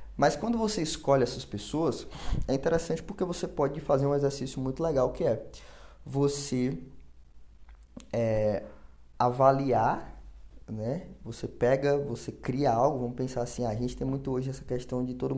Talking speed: 150 wpm